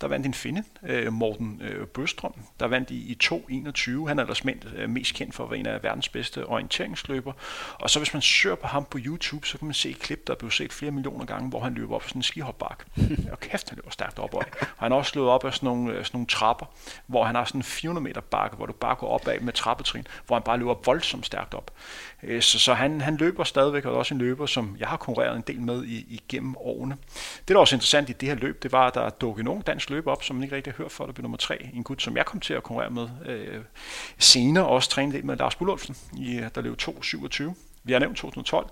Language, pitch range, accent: Danish, 125-145 Hz, native